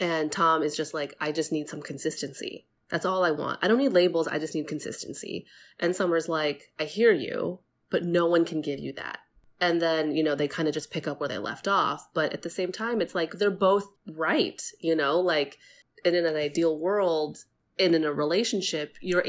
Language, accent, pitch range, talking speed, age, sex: English, American, 150-185 Hz, 225 wpm, 20-39, female